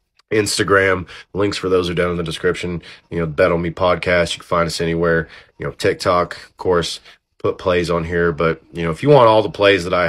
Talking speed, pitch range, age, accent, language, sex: 240 wpm, 85-100 Hz, 30-49, American, English, male